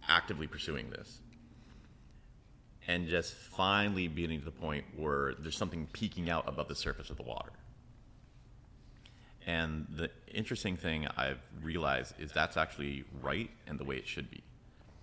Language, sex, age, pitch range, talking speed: English, male, 30-49, 75-95 Hz, 150 wpm